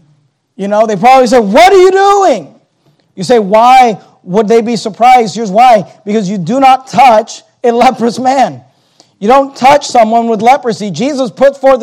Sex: male